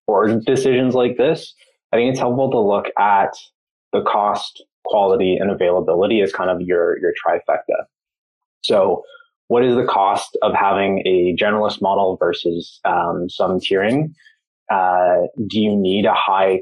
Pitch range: 95-130 Hz